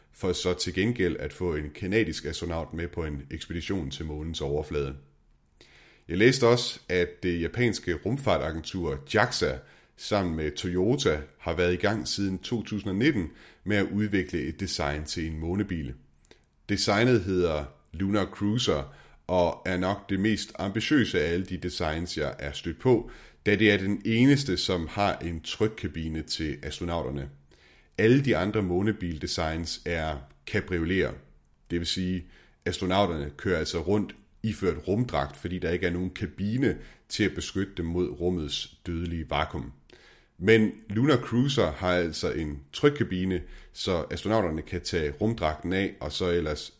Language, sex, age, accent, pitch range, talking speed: Danish, male, 30-49, native, 75-100 Hz, 150 wpm